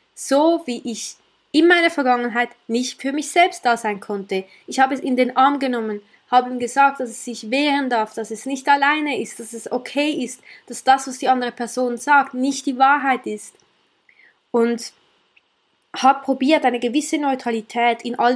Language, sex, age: German, female, 20-39